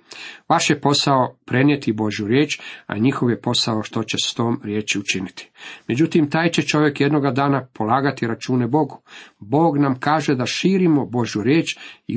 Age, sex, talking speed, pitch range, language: 50-69, male, 165 wpm, 115-145 Hz, Croatian